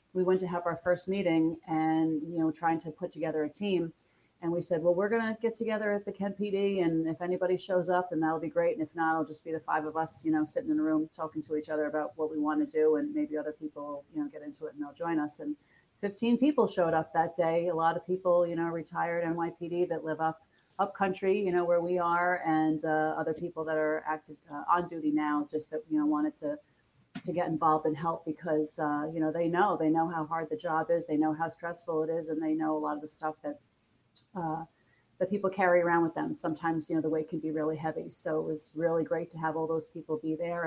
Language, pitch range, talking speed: English, 155-180 Hz, 265 wpm